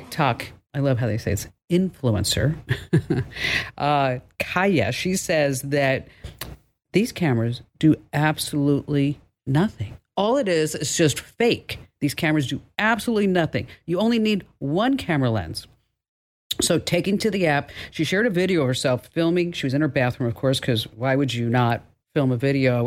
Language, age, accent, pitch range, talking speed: English, 50-69, American, 125-175 Hz, 165 wpm